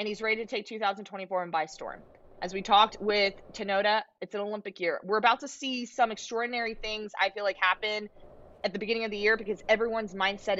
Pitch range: 205-270 Hz